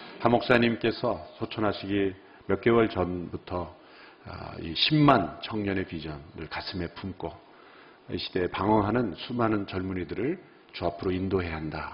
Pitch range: 90-125 Hz